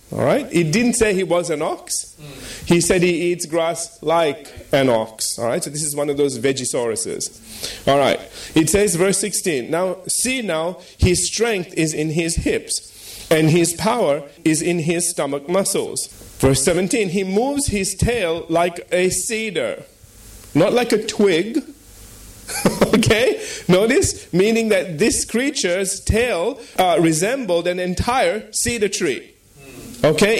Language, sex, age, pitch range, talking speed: English, male, 30-49, 155-200 Hz, 145 wpm